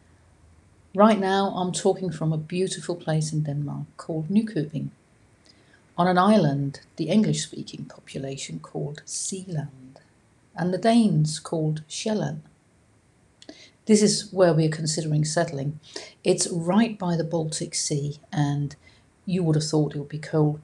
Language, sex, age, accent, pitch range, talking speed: English, female, 50-69, British, 140-180 Hz, 135 wpm